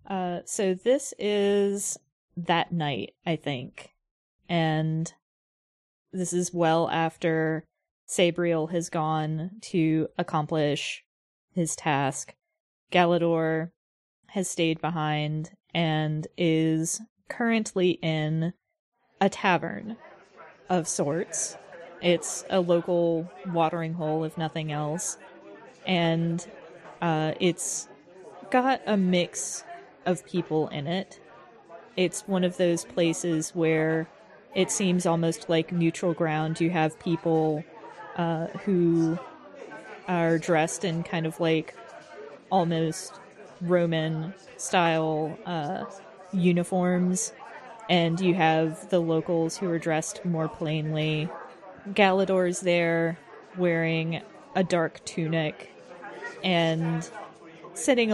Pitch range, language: 160-185 Hz, English